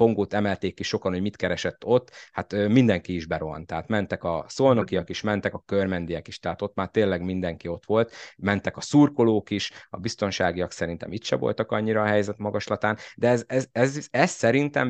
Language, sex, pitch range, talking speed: Hungarian, male, 90-105 Hz, 195 wpm